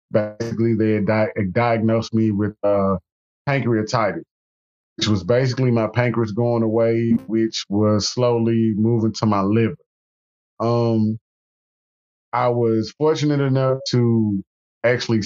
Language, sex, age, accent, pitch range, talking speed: English, male, 20-39, American, 105-125 Hz, 115 wpm